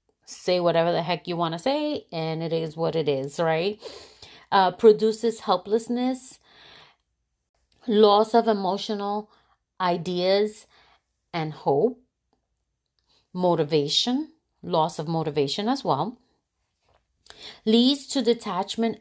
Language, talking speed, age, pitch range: English, 105 wpm, 30-49, 170-230 Hz